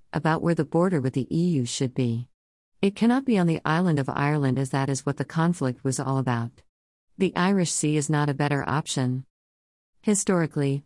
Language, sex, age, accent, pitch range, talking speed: English, female, 50-69, American, 135-170 Hz, 195 wpm